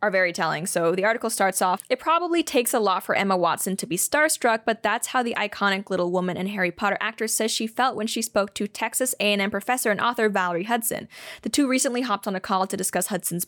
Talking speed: 250 wpm